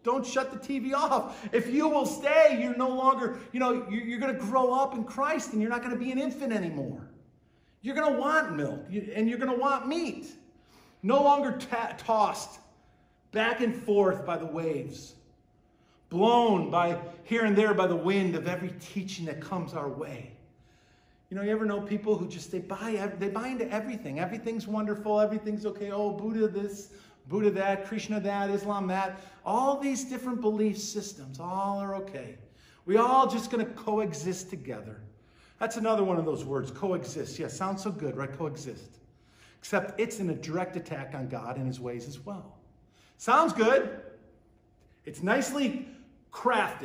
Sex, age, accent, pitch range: male, 50-69, American, 160-235 Hz